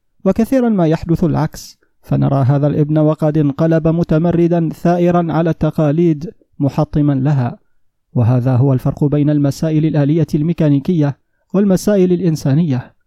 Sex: male